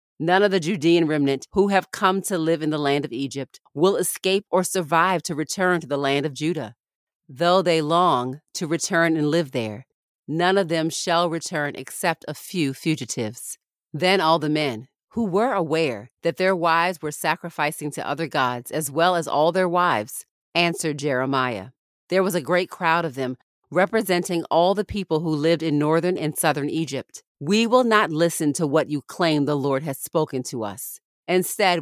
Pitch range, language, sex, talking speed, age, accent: 145-180 Hz, English, female, 185 wpm, 40-59, American